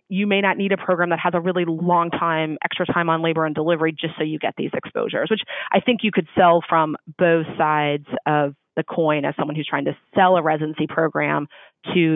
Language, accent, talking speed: English, American, 225 wpm